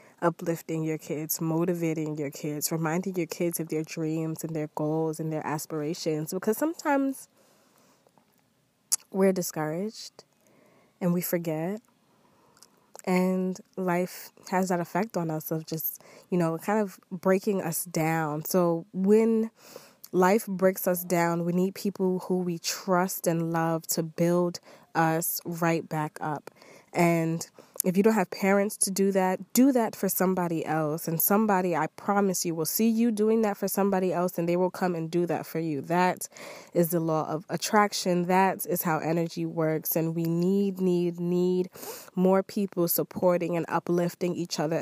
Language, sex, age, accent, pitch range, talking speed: English, female, 20-39, American, 165-195 Hz, 160 wpm